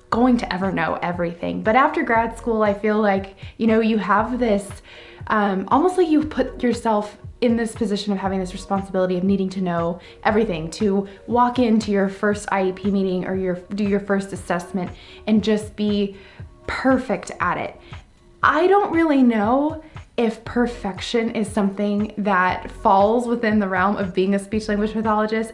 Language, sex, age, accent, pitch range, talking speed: English, female, 20-39, American, 190-225 Hz, 170 wpm